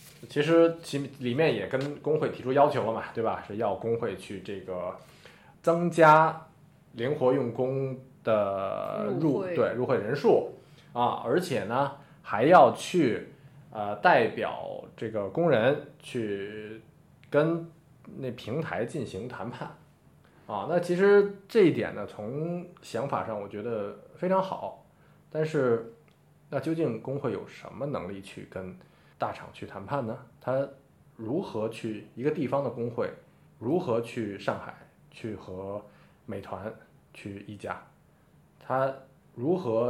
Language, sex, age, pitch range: Chinese, male, 20-39, 110-150 Hz